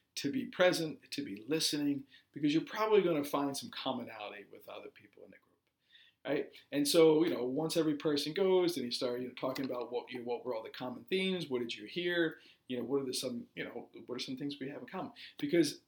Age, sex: 50-69, male